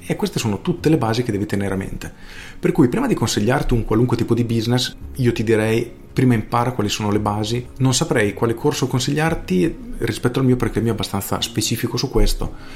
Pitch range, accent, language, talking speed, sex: 105-125 Hz, native, Italian, 215 wpm, male